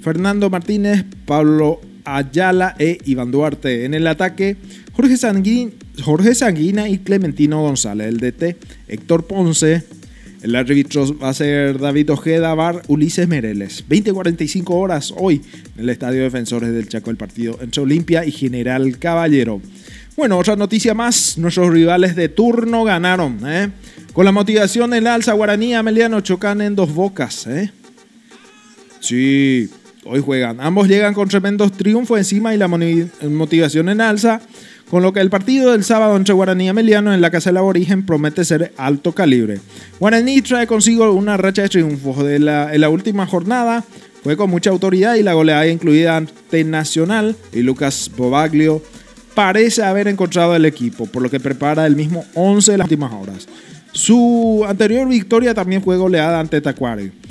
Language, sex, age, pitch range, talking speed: Spanish, male, 20-39, 150-205 Hz, 160 wpm